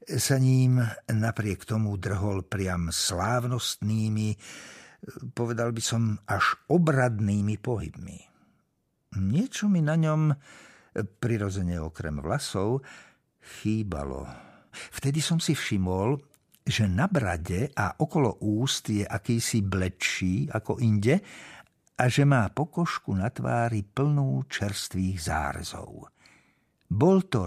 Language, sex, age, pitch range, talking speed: Slovak, male, 60-79, 100-135 Hz, 105 wpm